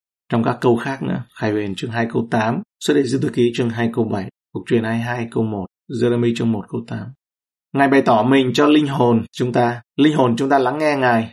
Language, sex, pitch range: Vietnamese, male, 110-130 Hz